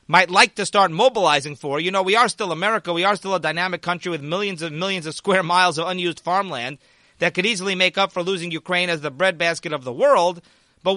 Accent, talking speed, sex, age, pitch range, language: American, 235 wpm, male, 30-49, 165-205 Hz, English